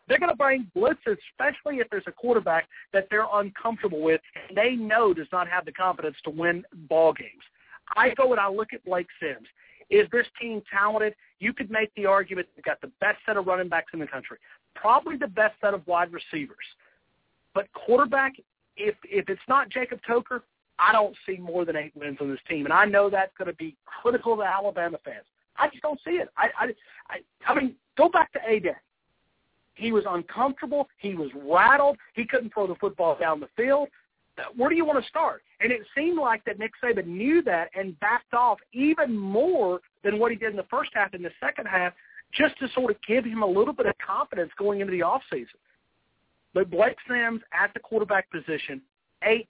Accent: American